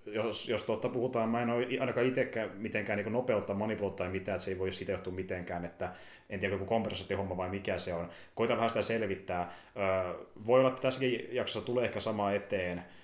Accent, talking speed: native, 200 wpm